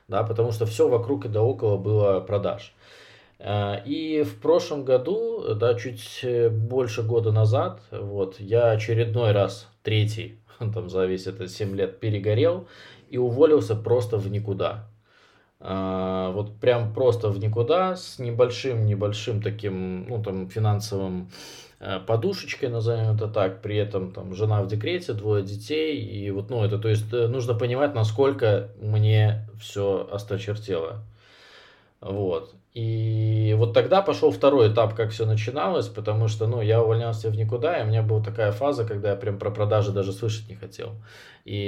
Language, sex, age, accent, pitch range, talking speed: Russian, male, 20-39, native, 100-115 Hz, 150 wpm